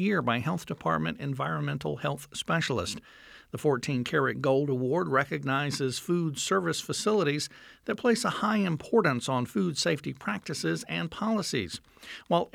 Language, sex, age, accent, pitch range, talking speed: English, male, 60-79, American, 130-180 Hz, 135 wpm